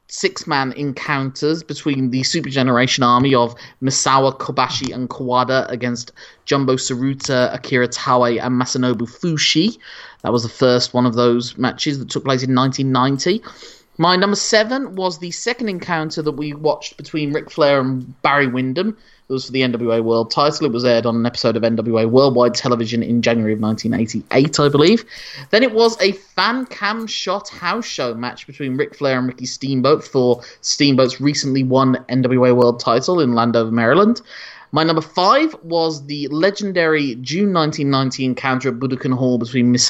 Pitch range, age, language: 120-155 Hz, 30-49, English